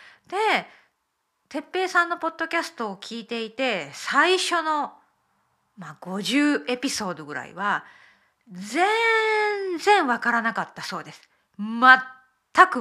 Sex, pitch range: female, 205-330 Hz